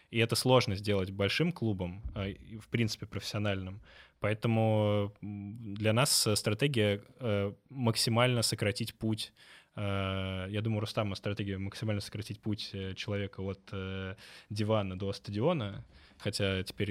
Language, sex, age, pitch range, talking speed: Russian, male, 20-39, 100-115 Hz, 105 wpm